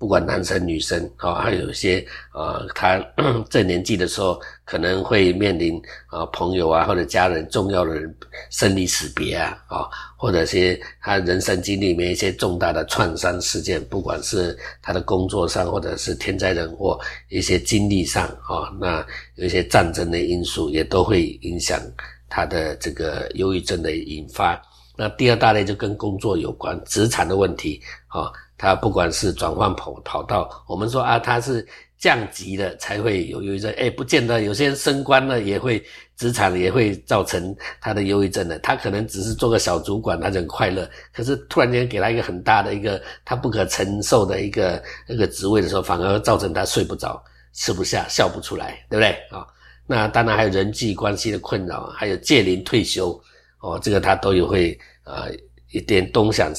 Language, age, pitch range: Chinese, 50-69, 90-110 Hz